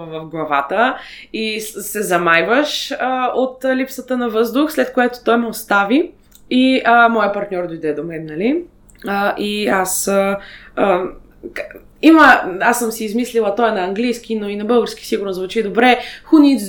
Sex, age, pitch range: female, 20-39, 225-295 Hz